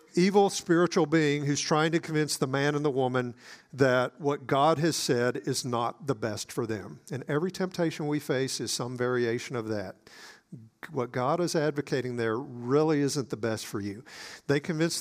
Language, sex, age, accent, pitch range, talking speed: English, male, 50-69, American, 130-165 Hz, 185 wpm